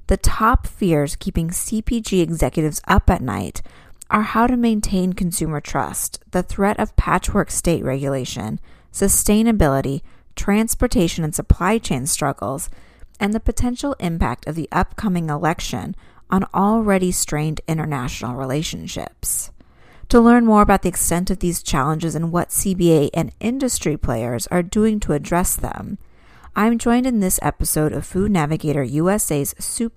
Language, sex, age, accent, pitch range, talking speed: English, female, 40-59, American, 155-210 Hz, 140 wpm